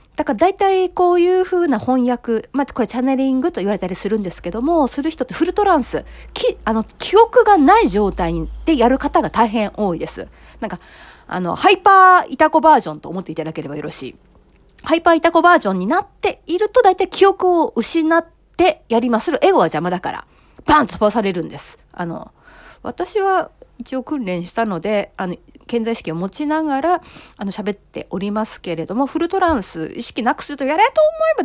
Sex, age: female, 40-59